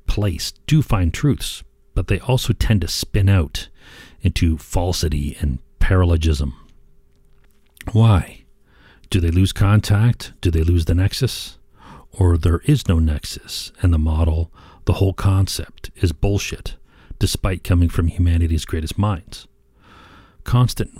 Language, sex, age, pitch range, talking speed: English, male, 40-59, 80-100 Hz, 130 wpm